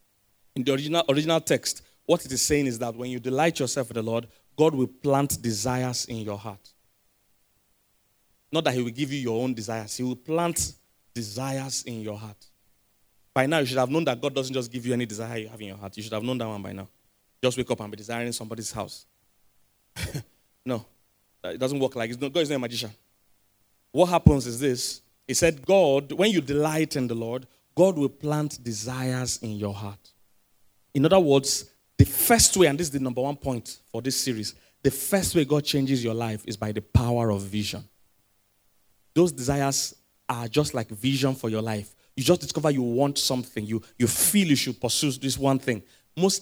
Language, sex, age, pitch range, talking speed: English, male, 30-49, 100-135 Hz, 205 wpm